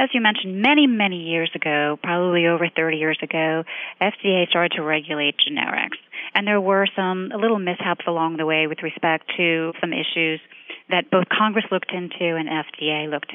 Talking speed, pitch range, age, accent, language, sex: 180 wpm, 165-210 Hz, 30-49, American, English, female